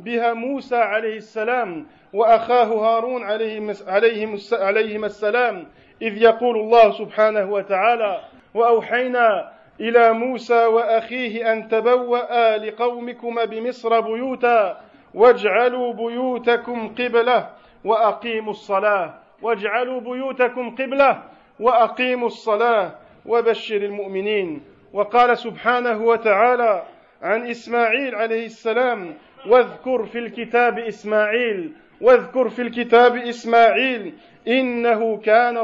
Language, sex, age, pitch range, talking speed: French, male, 50-69, 220-245 Hz, 85 wpm